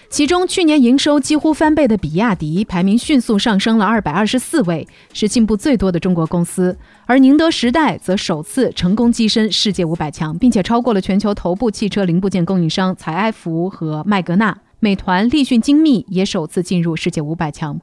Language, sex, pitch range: Chinese, female, 175-245 Hz